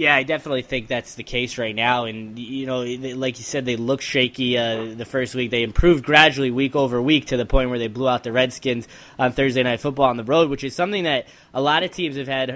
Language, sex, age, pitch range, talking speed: English, male, 10-29, 120-135 Hz, 260 wpm